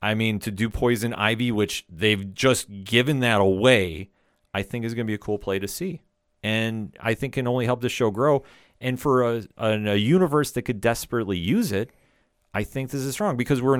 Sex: male